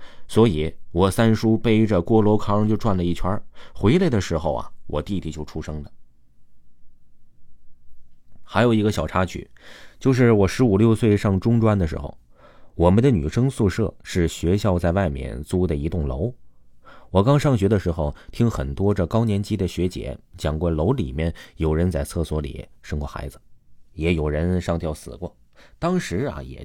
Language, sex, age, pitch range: Chinese, male, 30-49, 75-105 Hz